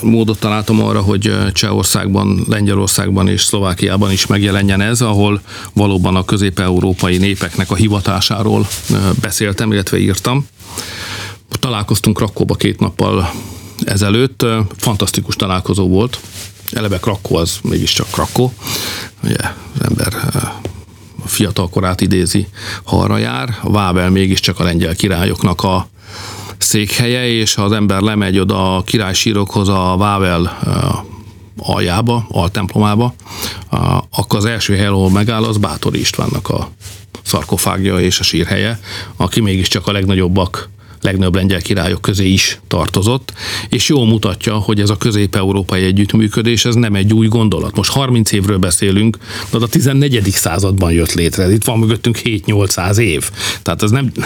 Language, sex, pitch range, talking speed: Hungarian, male, 95-110 Hz, 130 wpm